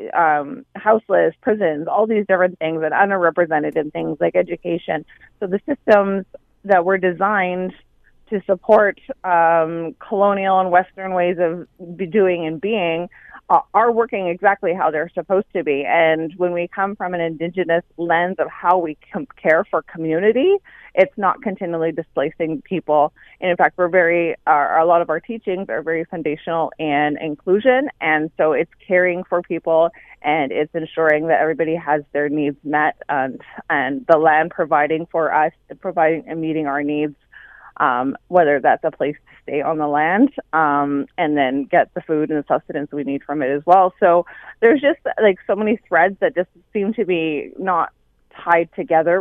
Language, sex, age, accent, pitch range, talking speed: English, female, 30-49, American, 155-190 Hz, 175 wpm